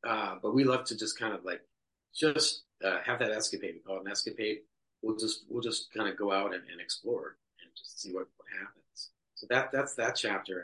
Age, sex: 40-59, male